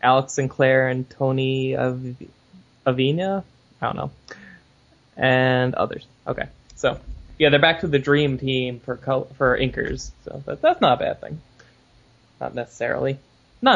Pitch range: 125-135 Hz